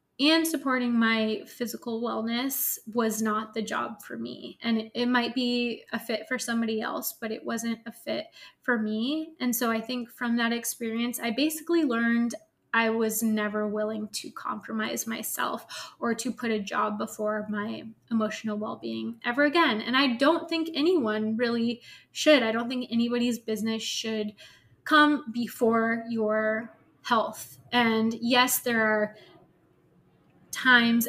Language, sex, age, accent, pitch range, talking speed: English, female, 20-39, American, 220-245 Hz, 150 wpm